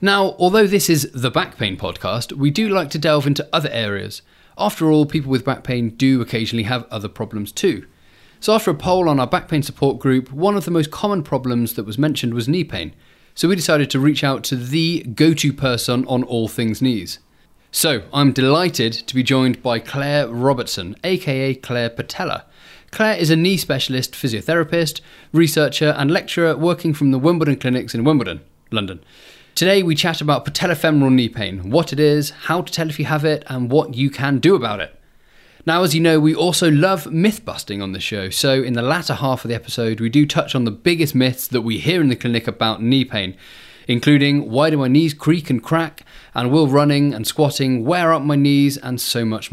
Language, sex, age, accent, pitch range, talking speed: English, male, 30-49, British, 125-160 Hz, 210 wpm